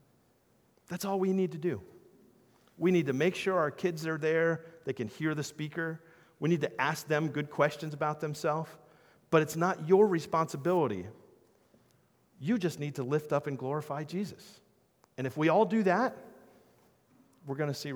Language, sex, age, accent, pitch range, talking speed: English, male, 40-59, American, 125-160 Hz, 175 wpm